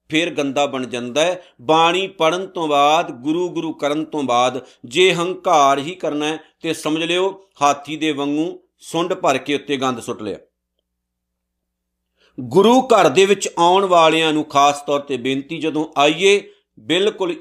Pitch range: 140-190 Hz